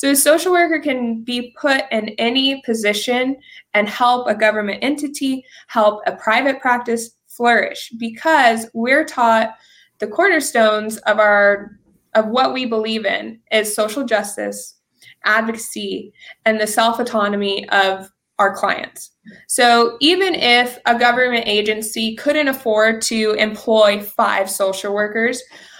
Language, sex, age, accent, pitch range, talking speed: English, female, 20-39, American, 215-255 Hz, 130 wpm